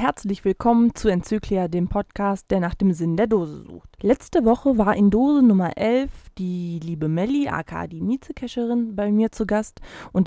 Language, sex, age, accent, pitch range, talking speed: German, female, 20-39, German, 185-235 Hz, 180 wpm